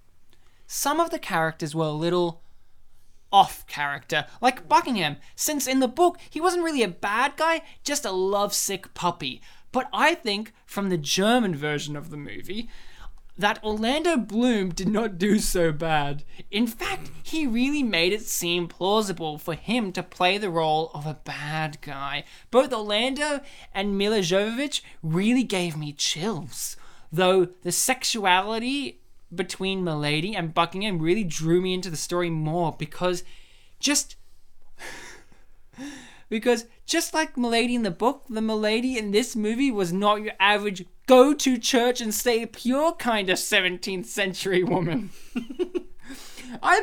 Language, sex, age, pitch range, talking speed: English, male, 20-39, 170-245 Hz, 145 wpm